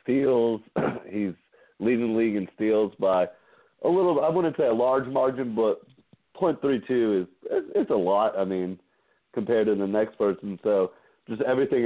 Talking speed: 160 wpm